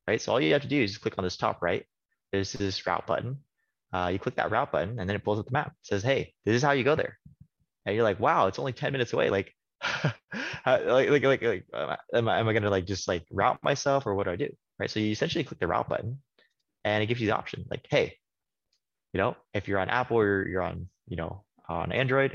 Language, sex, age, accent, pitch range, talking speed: English, male, 20-39, American, 95-115 Hz, 265 wpm